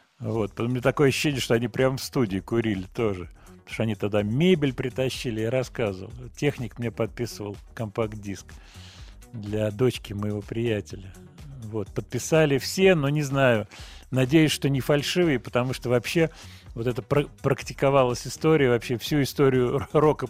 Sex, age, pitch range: male, 40-59, 110-140 Hz